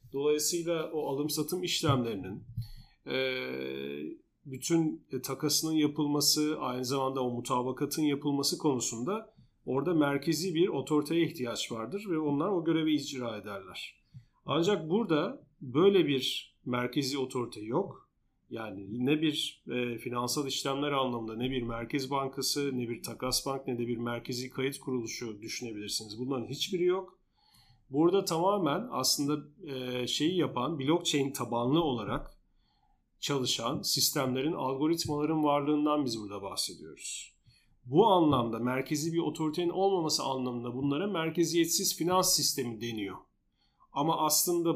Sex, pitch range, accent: male, 125-155 Hz, native